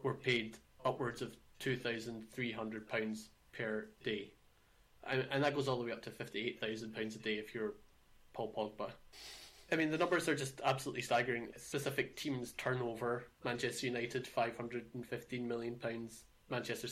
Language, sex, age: English, male, 20-39